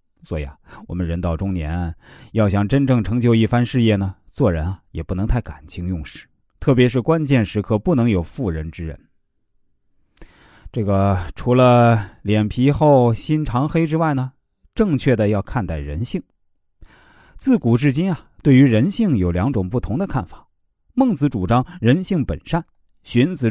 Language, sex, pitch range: Chinese, male, 90-135 Hz